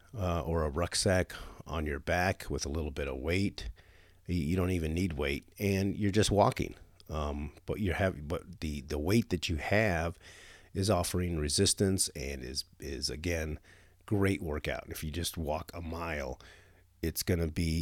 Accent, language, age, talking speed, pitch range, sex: American, English, 50-69, 175 wpm, 80-95 Hz, male